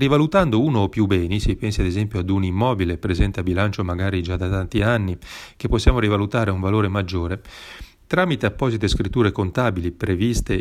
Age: 40-59